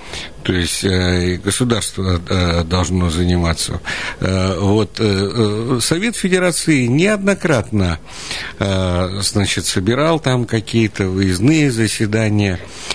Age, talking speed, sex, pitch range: 60-79, 70 wpm, male, 90-120 Hz